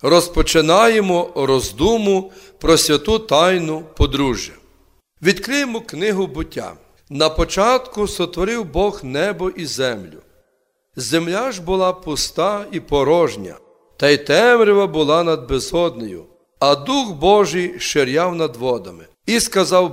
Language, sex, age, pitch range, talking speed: Ukrainian, male, 40-59, 145-200 Hz, 110 wpm